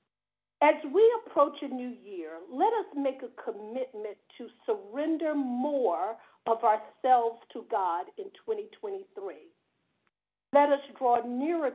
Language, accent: English, American